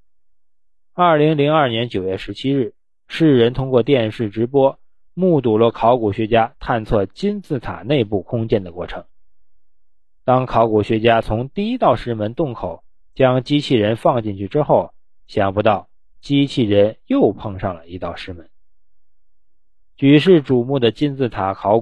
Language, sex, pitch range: Chinese, male, 95-135 Hz